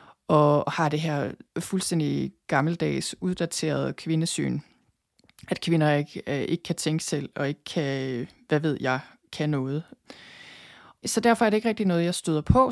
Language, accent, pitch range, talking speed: Danish, native, 145-180 Hz, 155 wpm